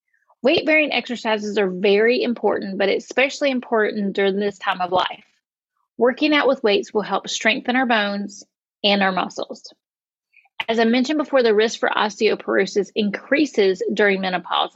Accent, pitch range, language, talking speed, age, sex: American, 210-255 Hz, English, 145 wpm, 30-49, female